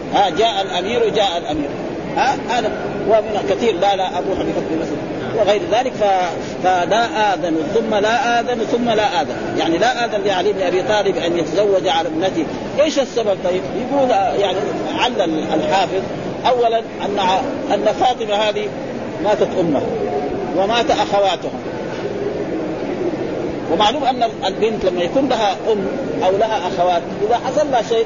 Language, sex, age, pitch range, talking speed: Arabic, male, 40-59, 190-255 Hz, 135 wpm